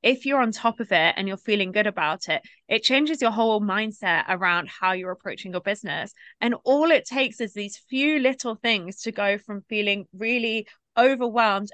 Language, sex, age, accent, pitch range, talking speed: English, female, 20-39, British, 195-235 Hz, 195 wpm